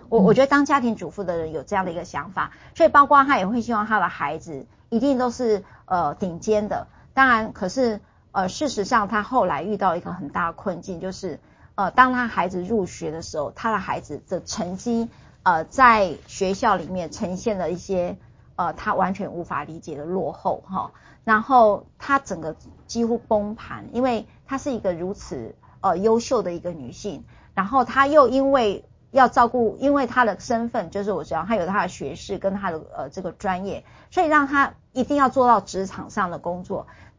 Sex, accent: female, American